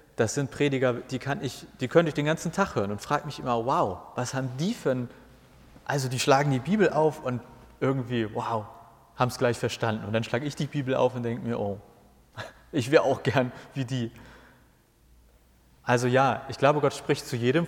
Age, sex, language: 30-49, male, German